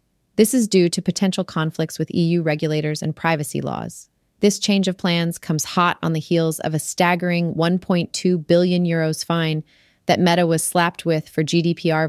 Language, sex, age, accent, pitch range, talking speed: English, female, 30-49, American, 155-180 Hz, 175 wpm